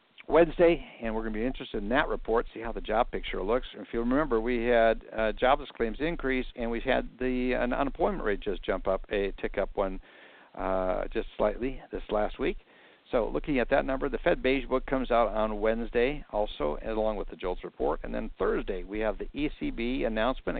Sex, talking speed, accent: male, 220 wpm, American